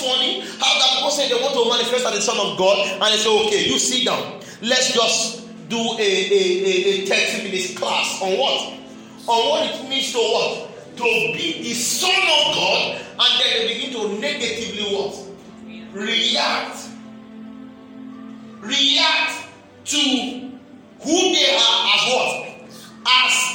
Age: 40-59